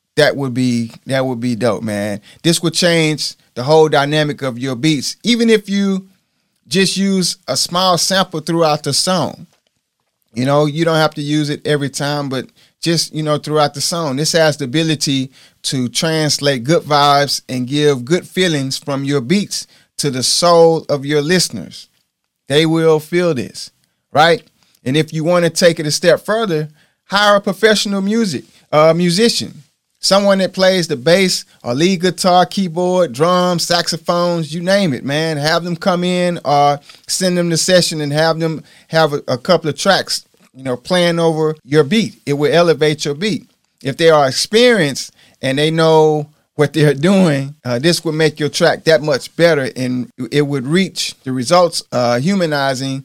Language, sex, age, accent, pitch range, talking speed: English, male, 30-49, American, 145-180 Hz, 180 wpm